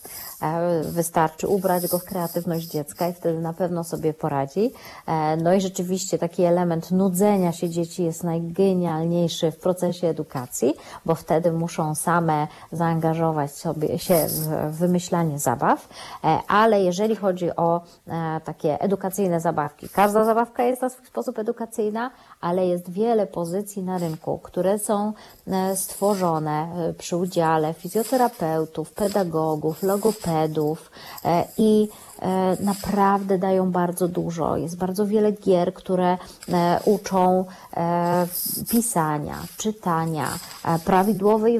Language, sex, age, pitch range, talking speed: Polish, female, 30-49, 170-200 Hz, 110 wpm